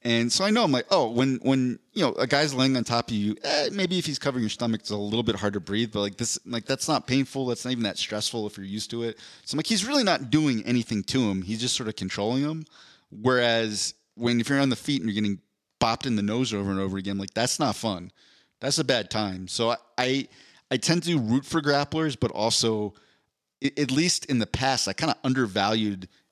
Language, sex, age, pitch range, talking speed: English, male, 30-49, 105-135 Hz, 255 wpm